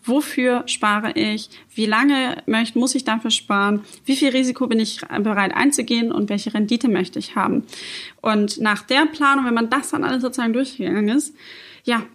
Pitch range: 220-275 Hz